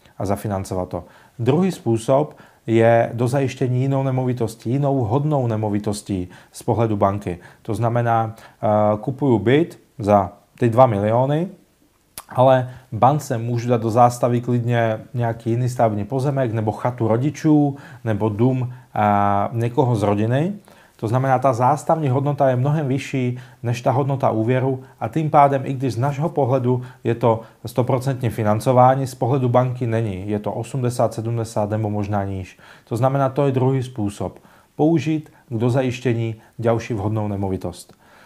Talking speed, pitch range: 140 wpm, 110-135 Hz